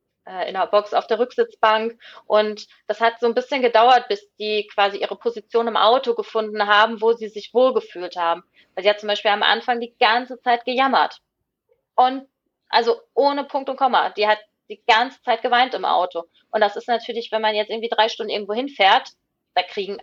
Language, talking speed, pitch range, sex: German, 200 wpm, 200-245 Hz, female